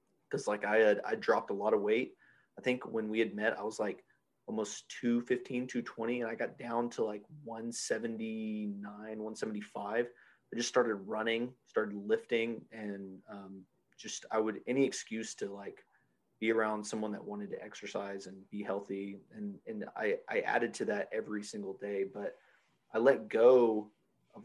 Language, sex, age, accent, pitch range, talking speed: English, male, 30-49, American, 105-120 Hz, 170 wpm